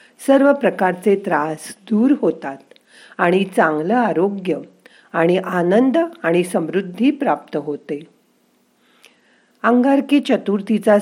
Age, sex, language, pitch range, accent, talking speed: 50-69, female, Marathi, 175-235 Hz, native, 85 wpm